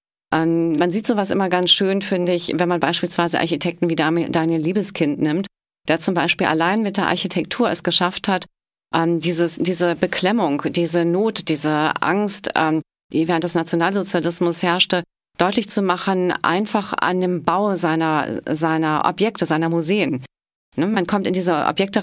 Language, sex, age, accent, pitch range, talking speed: German, female, 30-49, German, 165-200 Hz, 145 wpm